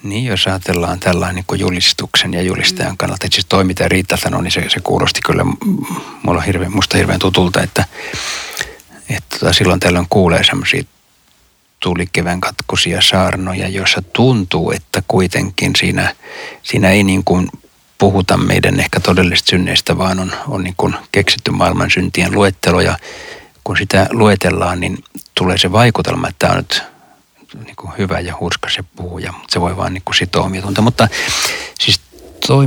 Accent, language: native, Finnish